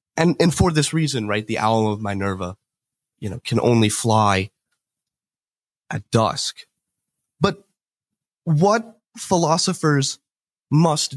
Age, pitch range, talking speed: 30-49, 120-175 Hz, 115 wpm